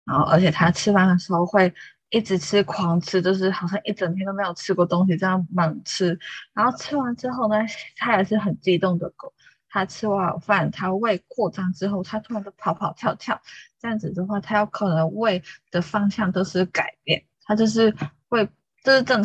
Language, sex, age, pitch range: Chinese, female, 20-39, 175-210 Hz